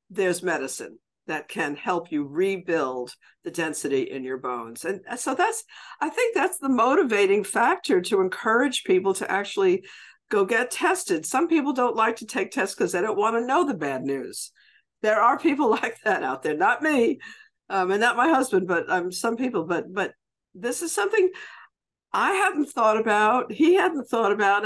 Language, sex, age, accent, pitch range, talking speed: English, female, 60-79, American, 185-305 Hz, 185 wpm